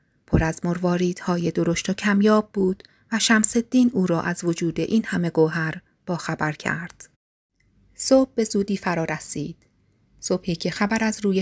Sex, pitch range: female, 160-200 Hz